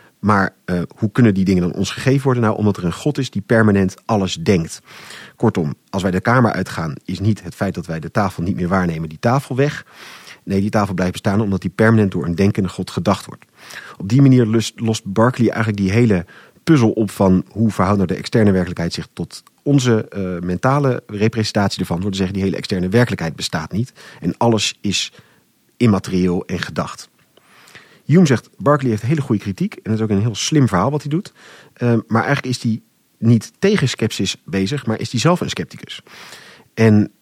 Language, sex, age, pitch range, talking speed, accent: Dutch, male, 40-59, 95-120 Hz, 205 wpm, Dutch